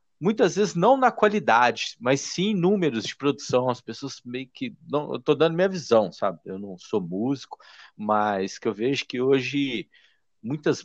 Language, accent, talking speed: Portuguese, Brazilian, 185 wpm